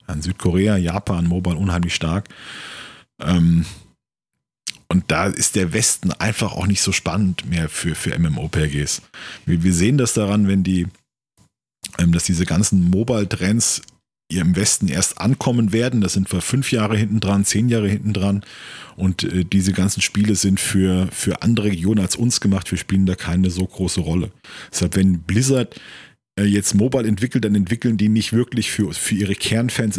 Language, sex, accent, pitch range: German, male, German, 90-110 Hz